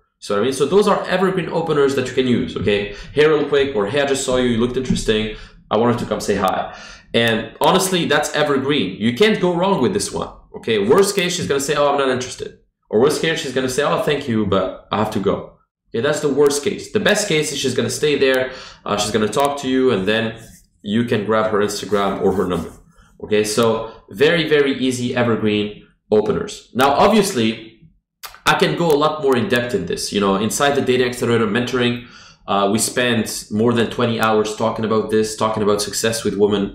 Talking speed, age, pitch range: 230 wpm, 20-39, 110-135 Hz